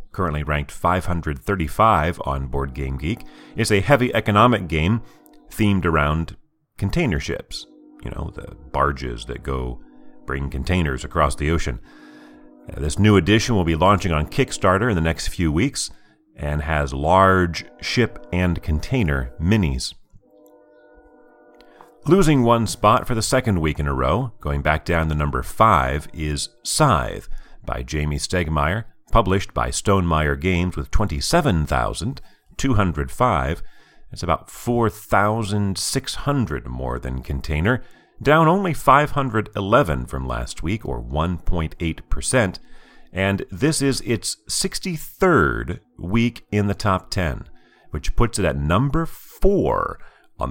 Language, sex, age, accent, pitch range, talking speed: English, male, 40-59, American, 75-110 Hz, 125 wpm